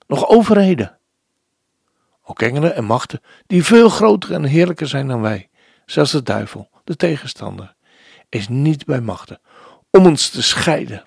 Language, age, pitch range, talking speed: Dutch, 60-79, 130-185 Hz, 145 wpm